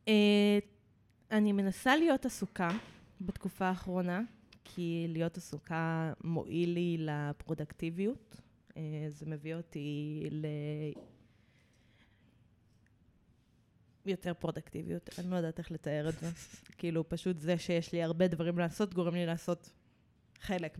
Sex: female